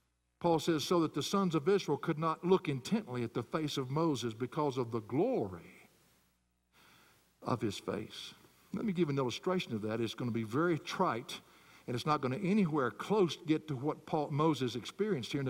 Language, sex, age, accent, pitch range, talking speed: English, male, 60-79, American, 135-195 Hz, 205 wpm